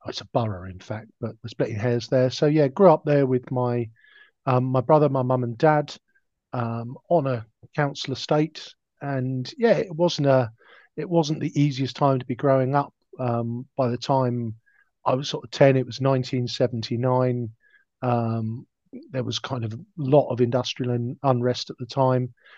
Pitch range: 120-140 Hz